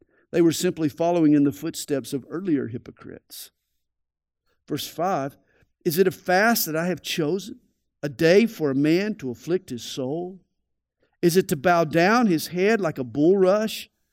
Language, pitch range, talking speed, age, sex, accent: English, 135-210 Hz, 165 wpm, 50-69, male, American